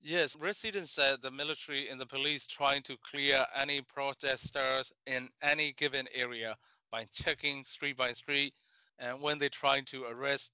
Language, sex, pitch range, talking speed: English, male, 135-155 Hz, 160 wpm